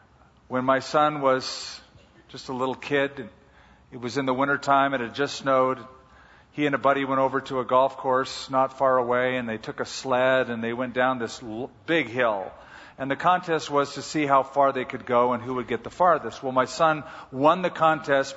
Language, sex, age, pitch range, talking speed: English, male, 50-69, 125-150 Hz, 210 wpm